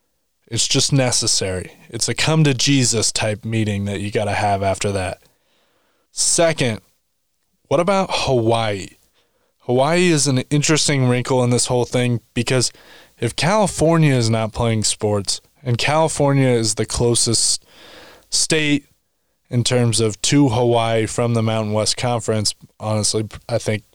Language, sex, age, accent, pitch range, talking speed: English, male, 20-39, American, 110-135 Hz, 135 wpm